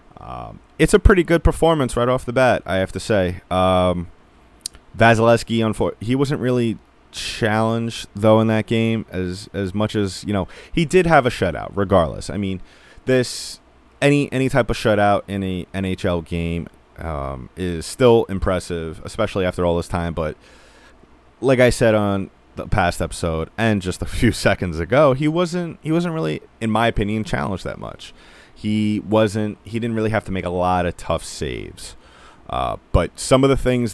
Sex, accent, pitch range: male, American, 85-110 Hz